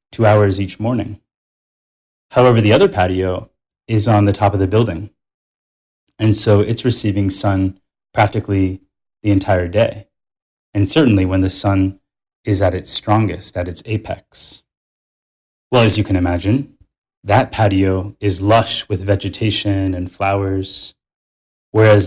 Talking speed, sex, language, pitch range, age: 135 wpm, male, English, 95-110 Hz, 10-29